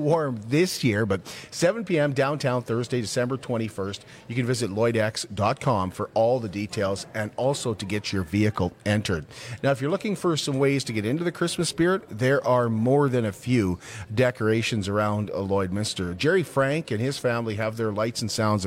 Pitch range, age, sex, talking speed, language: 105-135 Hz, 40-59, male, 180 wpm, English